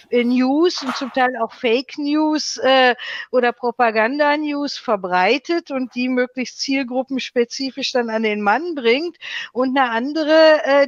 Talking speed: 140 wpm